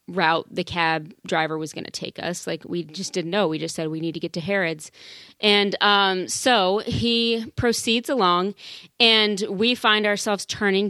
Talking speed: 185 wpm